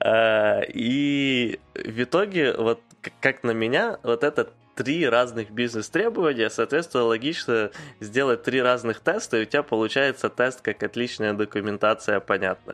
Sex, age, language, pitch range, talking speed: male, 20-39, Ukrainian, 100-125 Hz, 125 wpm